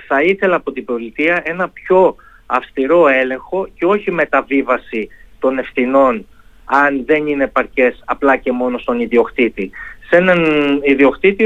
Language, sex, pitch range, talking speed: Greek, male, 140-205 Hz, 135 wpm